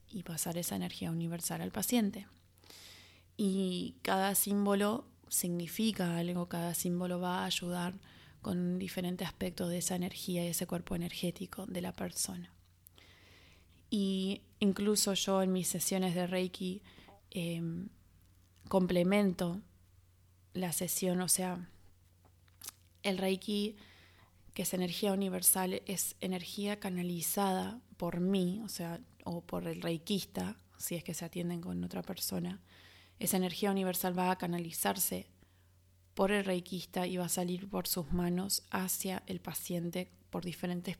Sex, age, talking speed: female, 20-39, 130 wpm